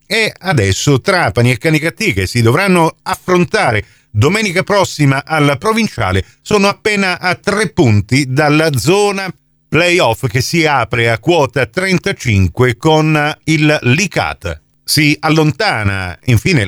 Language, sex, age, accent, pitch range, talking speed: Italian, male, 50-69, native, 135-190 Hz, 120 wpm